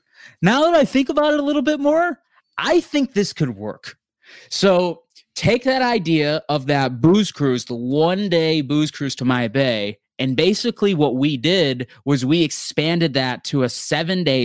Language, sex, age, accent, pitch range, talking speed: English, male, 30-49, American, 125-160 Hz, 175 wpm